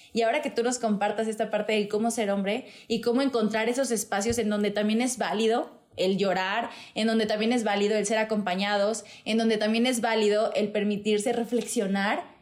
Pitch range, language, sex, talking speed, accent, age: 210-235 Hz, Spanish, female, 195 wpm, Mexican, 20-39